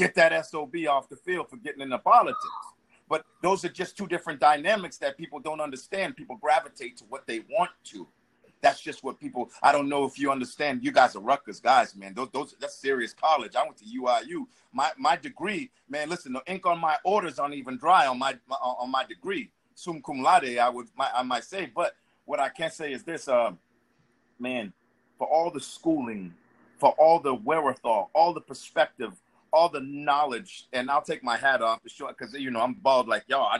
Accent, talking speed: American, 220 wpm